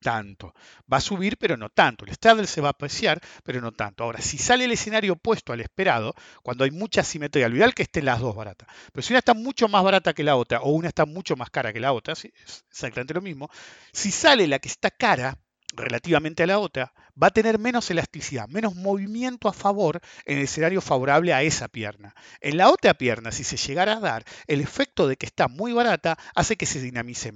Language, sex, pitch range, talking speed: English, male, 125-205 Hz, 230 wpm